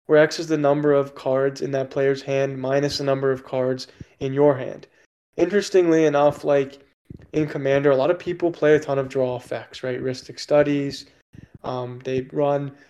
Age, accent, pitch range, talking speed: 20-39, American, 130-150 Hz, 185 wpm